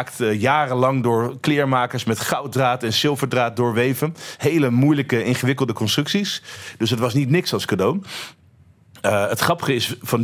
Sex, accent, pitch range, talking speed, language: male, Dutch, 115-140 Hz, 140 wpm, Dutch